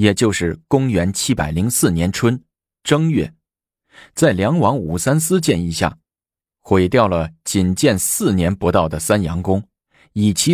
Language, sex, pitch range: Chinese, male, 85-125 Hz